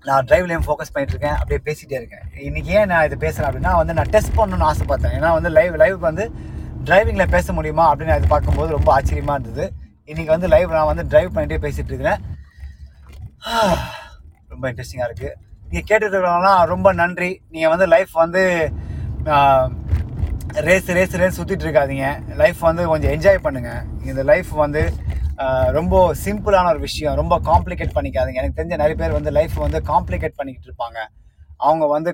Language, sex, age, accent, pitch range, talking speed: Tamil, male, 30-49, native, 120-170 Hz, 155 wpm